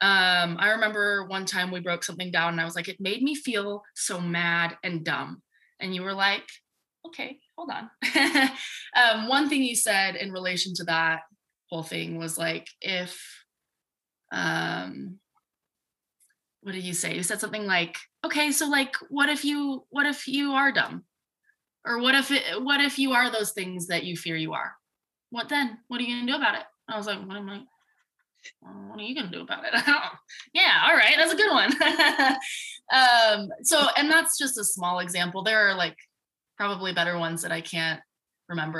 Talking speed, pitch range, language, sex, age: 190 wpm, 170-270 Hz, English, female, 20-39